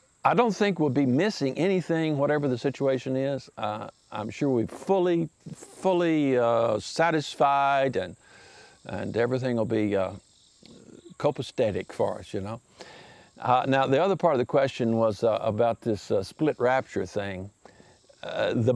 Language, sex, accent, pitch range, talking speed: English, male, American, 105-125 Hz, 155 wpm